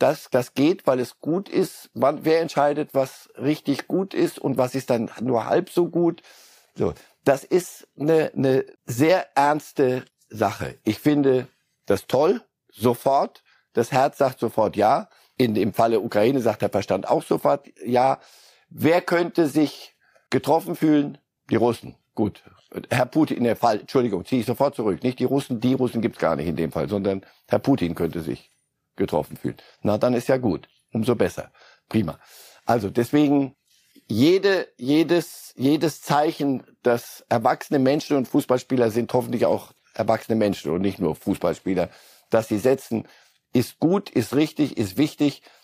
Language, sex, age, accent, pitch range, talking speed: German, male, 60-79, German, 110-145 Hz, 165 wpm